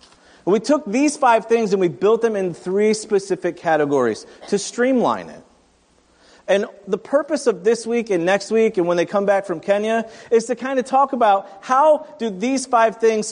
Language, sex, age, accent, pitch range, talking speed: English, male, 40-59, American, 185-235 Hz, 195 wpm